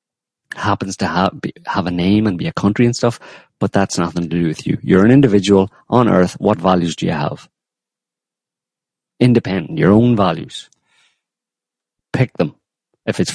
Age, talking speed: 50-69, 160 wpm